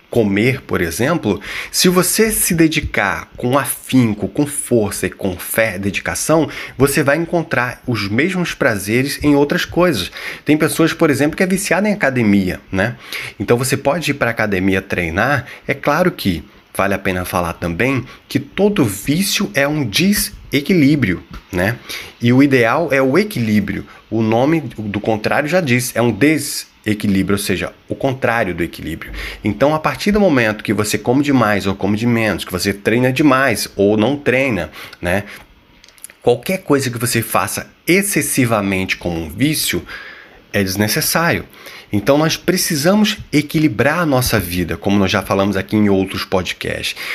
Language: Portuguese